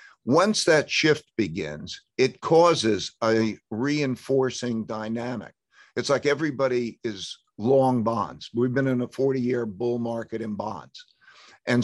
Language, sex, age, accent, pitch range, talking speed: English, male, 50-69, American, 110-140 Hz, 130 wpm